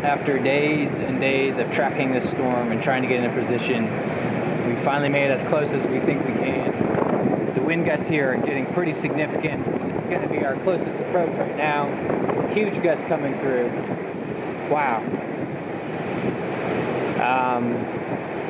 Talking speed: 160 wpm